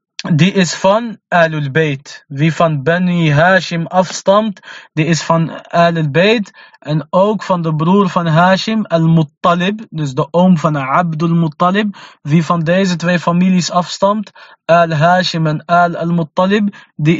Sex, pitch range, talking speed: male, 155-190 Hz, 150 wpm